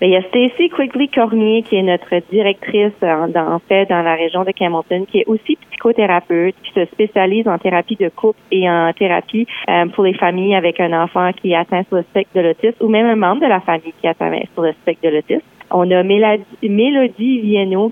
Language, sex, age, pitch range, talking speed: French, female, 30-49, 175-215 Hz, 215 wpm